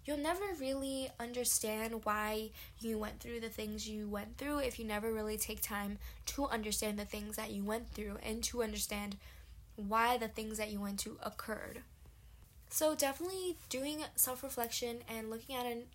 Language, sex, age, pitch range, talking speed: English, female, 10-29, 215-255 Hz, 175 wpm